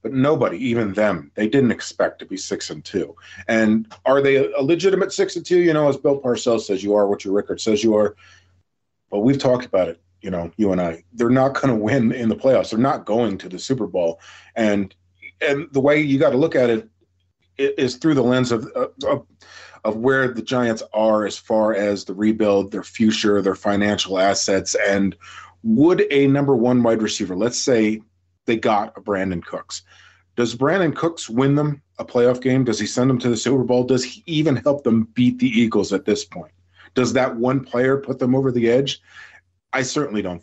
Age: 30-49